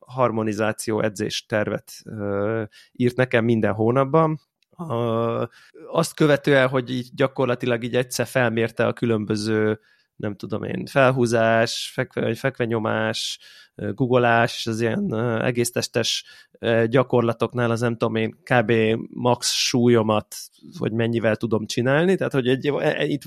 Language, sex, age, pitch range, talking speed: Hungarian, male, 20-39, 115-130 Hz, 115 wpm